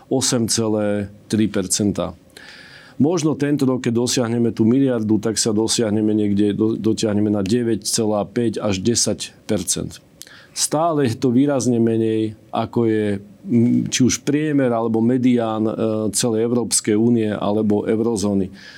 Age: 40-59